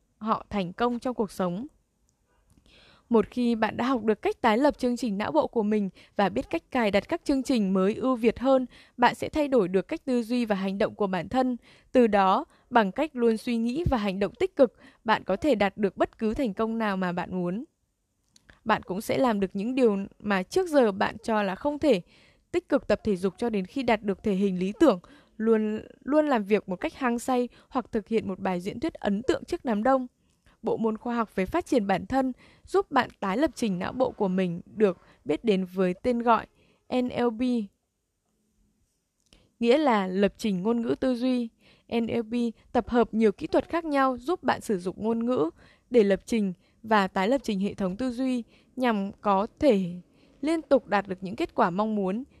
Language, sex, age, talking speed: Vietnamese, female, 10-29, 220 wpm